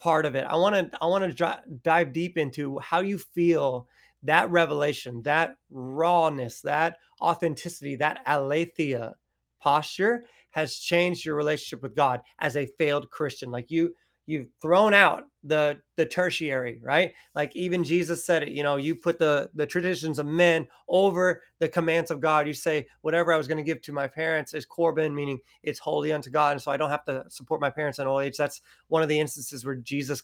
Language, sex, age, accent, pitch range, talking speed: English, male, 30-49, American, 140-170 Hz, 200 wpm